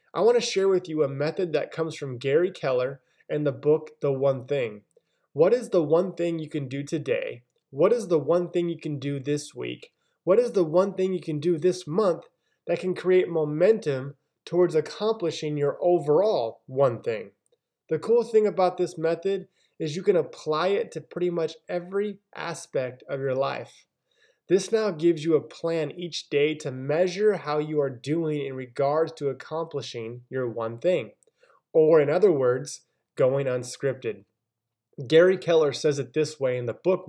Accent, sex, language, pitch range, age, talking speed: American, male, English, 145-185 Hz, 20-39, 185 wpm